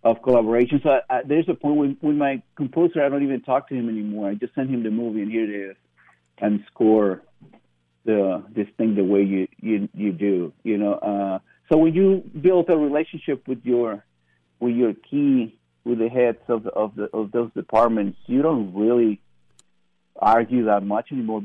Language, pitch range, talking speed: English, 100-135 Hz, 195 wpm